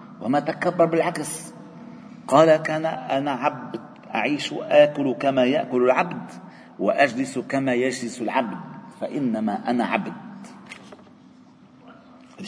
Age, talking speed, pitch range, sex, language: 50-69, 95 wpm, 150-235 Hz, male, Arabic